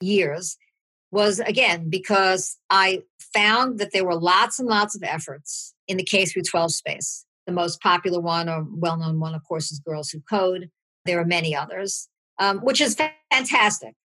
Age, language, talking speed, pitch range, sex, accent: 50-69, English, 165 wpm, 170-210 Hz, male, American